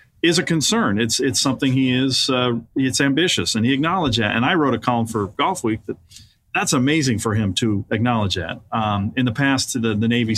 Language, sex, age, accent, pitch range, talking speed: English, male, 40-59, American, 105-135 Hz, 220 wpm